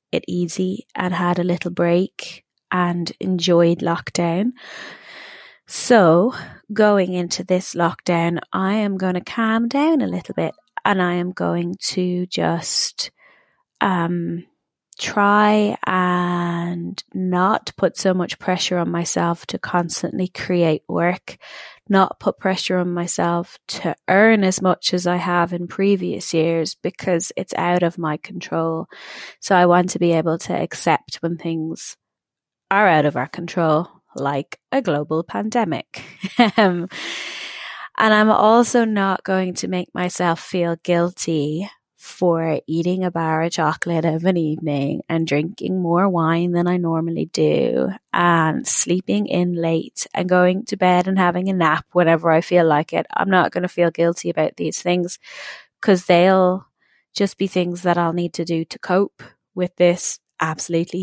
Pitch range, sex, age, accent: 170-190 Hz, female, 20-39, British